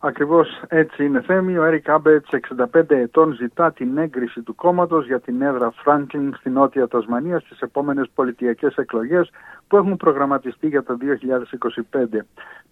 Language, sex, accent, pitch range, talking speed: Greek, male, native, 125-160 Hz, 145 wpm